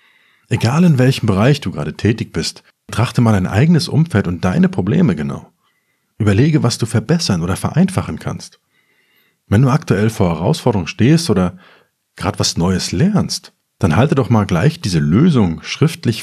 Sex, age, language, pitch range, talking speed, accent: male, 50-69, German, 90-135 Hz, 160 wpm, German